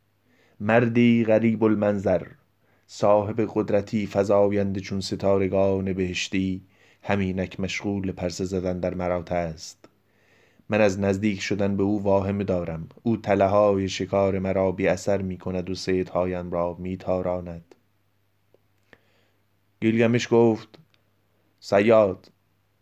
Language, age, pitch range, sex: Persian, 20-39, 95-105 Hz, male